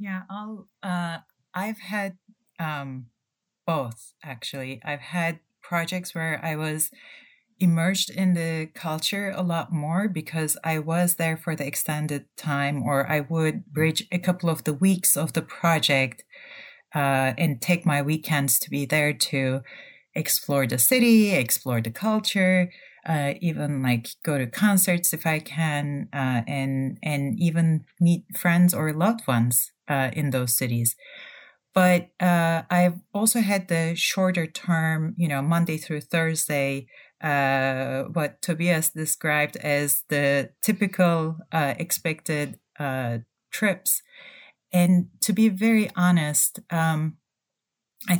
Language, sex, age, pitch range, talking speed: English, female, 30-49, 145-185 Hz, 135 wpm